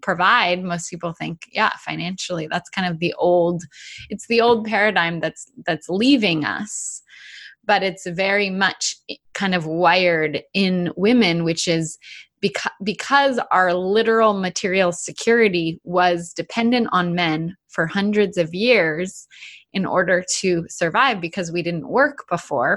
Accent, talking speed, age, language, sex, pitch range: American, 140 wpm, 20-39, English, female, 170-210 Hz